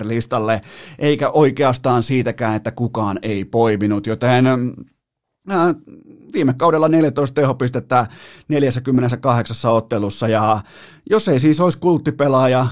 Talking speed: 100 wpm